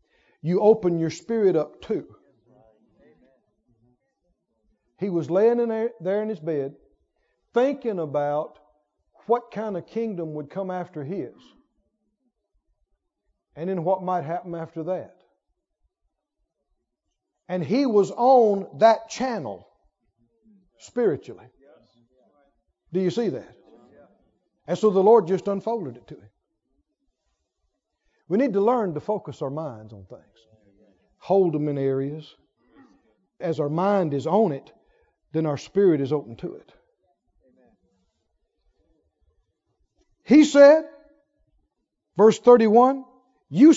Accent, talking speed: American, 115 wpm